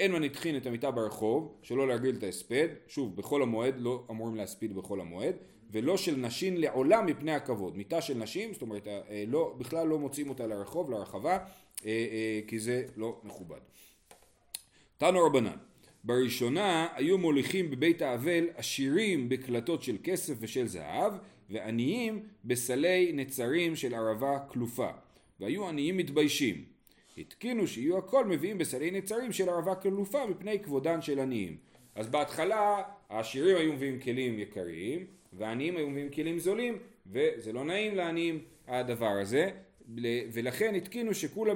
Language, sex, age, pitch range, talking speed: Hebrew, male, 40-59, 115-165 Hz, 145 wpm